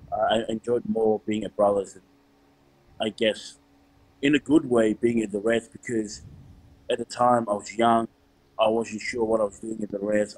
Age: 20-39